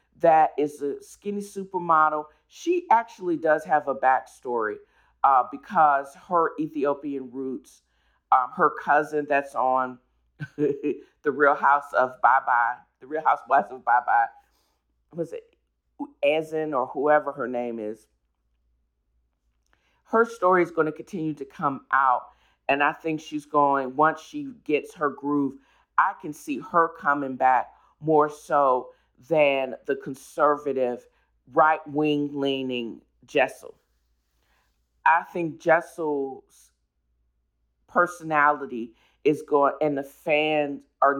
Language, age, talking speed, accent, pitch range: English, 40-59, 120 wpm, American, 135-175 Hz